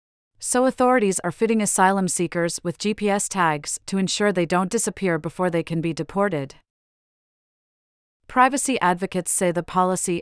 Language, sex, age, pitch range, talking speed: English, female, 30-49, 165-200 Hz, 140 wpm